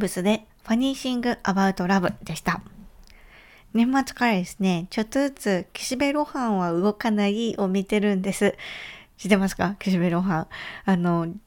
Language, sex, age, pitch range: Japanese, female, 20-39, 175-220 Hz